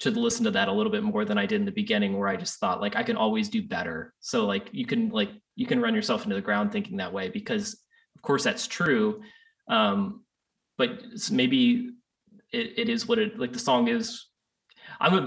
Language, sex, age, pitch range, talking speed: English, male, 20-39, 210-235 Hz, 225 wpm